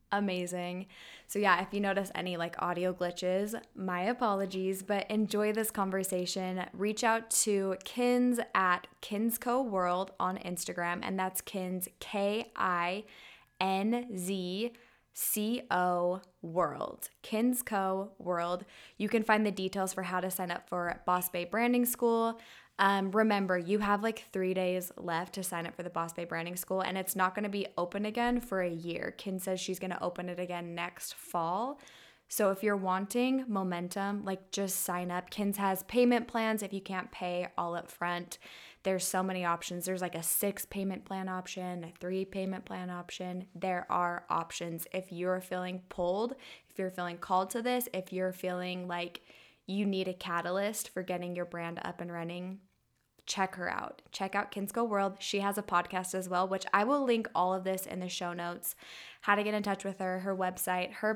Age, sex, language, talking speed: 20-39, female, English, 185 wpm